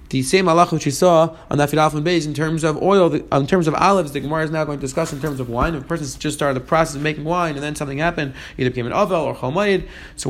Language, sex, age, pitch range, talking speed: English, male, 30-49, 145-190 Hz, 305 wpm